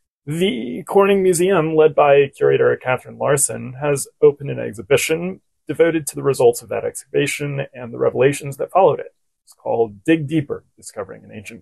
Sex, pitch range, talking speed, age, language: male, 120-175 Hz, 165 wpm, 30-49, English